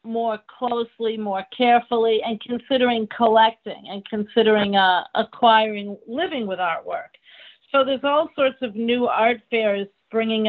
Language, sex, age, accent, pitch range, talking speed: English, female, 50-69, American, 205-235 Hz, 130 wpm